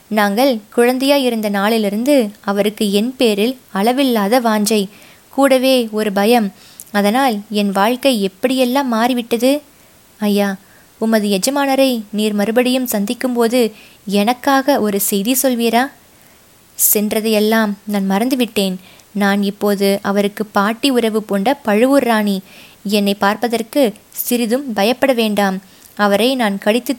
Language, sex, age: Tamil, female, 20-39